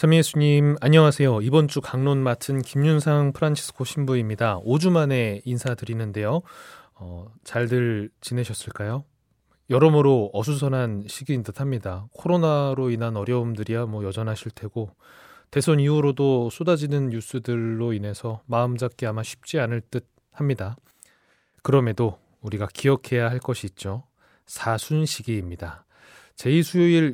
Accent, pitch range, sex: native, 110-140 Hz, male